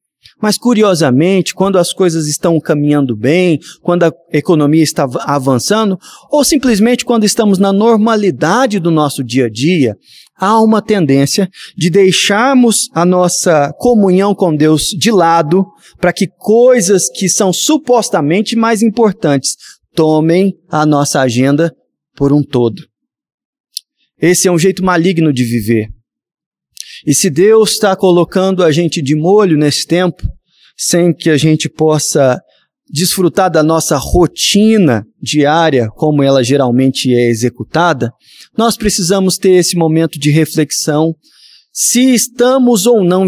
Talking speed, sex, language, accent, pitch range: 130 wpm, male, Portuguese, Brazilian, 150-205 Hz